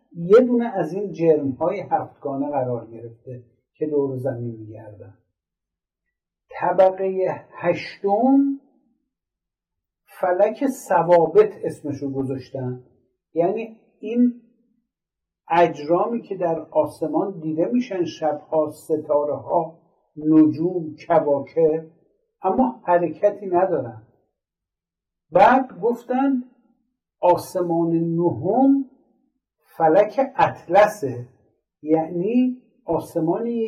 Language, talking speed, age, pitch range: Persian, 75 wpm, 60-79, 155-230 Hz